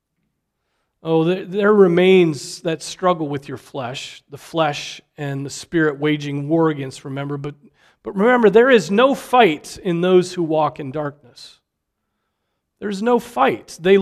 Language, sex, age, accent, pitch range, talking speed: English, male, 40-59, American, 155-210 Hz, 150 wpm